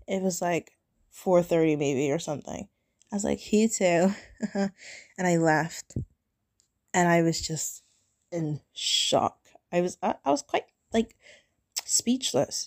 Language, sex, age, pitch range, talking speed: English, female, 20-39, 165-215 Hz, 135 wpm